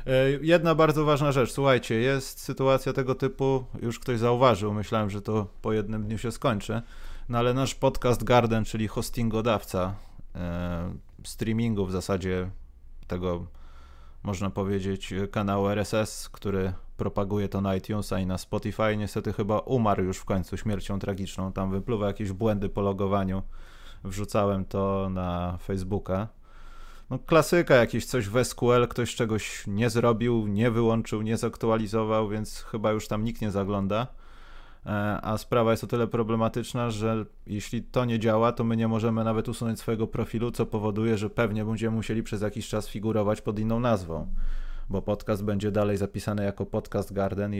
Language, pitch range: Polish, 100-120 Hz